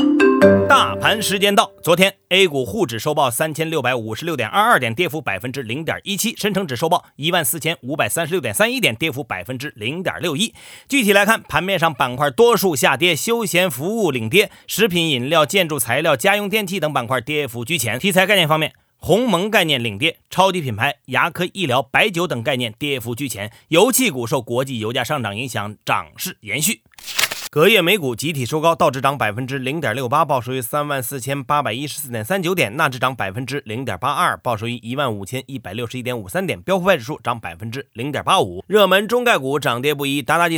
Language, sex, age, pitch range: Chinese, male, 30-49, 125-185 Hz